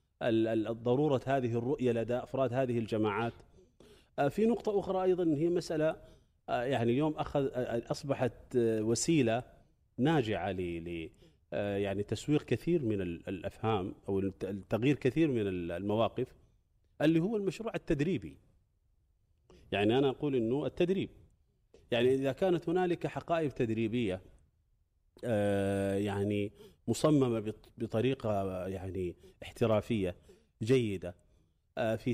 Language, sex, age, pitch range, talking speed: Arabic, male, 30-49, 100-135 Hz, 95 wpm